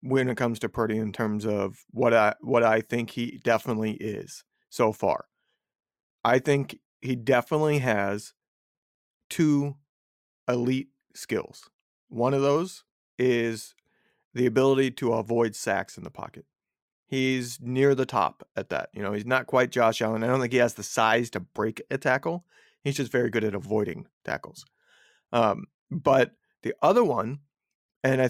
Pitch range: 115-140 Hz